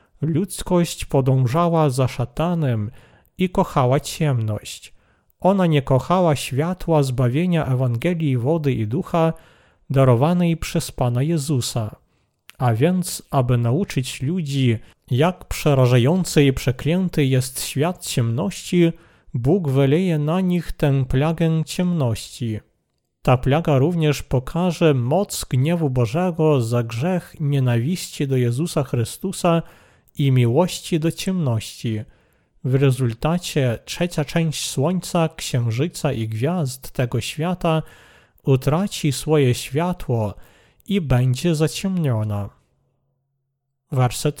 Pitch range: 125-165 Hz